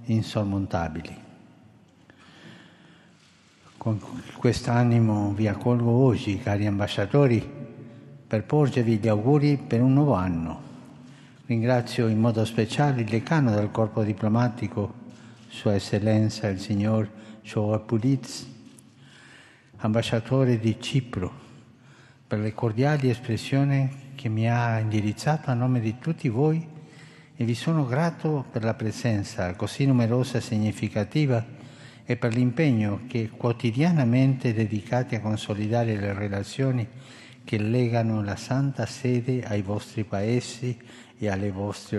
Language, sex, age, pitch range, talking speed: Italian, male, 60-79, 105-130 Hz, 115 wpm